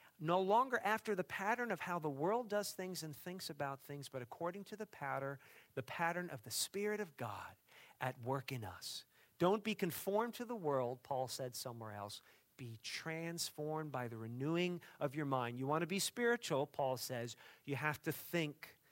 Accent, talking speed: American, 190 wpm